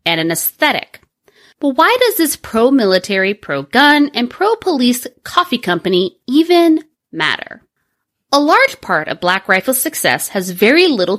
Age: 30-49